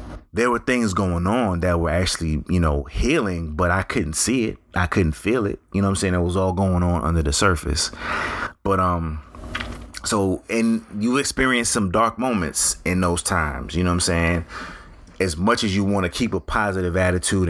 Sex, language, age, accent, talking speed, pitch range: male, English, 30-49, American, 205 wpm, 80-95 Hz